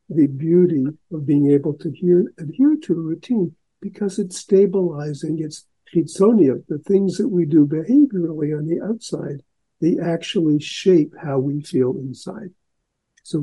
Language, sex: English, male